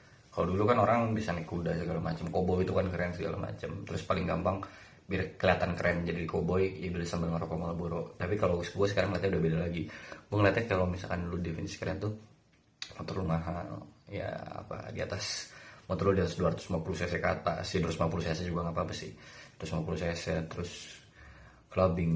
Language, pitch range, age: Indonesian, 85-95 Hz, 20-39